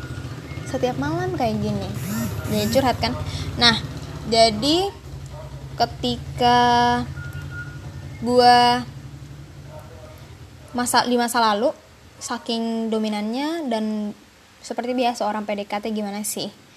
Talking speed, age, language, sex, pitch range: 85 wpm, 10-29, Indonesian, female, 215-250 Hz